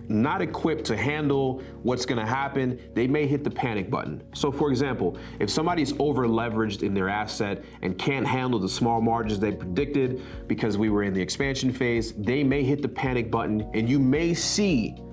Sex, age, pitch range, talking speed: male, 30-49, 100-130 Hz, 190 wpm